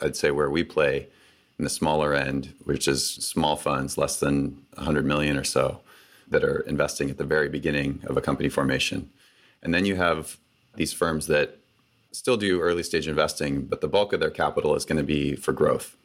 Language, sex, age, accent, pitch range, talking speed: English, male, 30-49, American, 75-90 Hz, 200 wpm